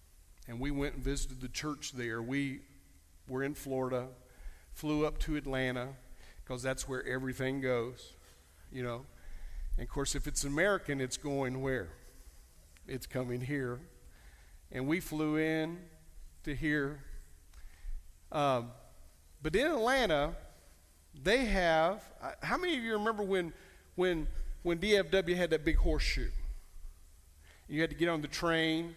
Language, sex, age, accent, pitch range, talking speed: English, male, 50-69, American, 115-165 Hz, 140 wpm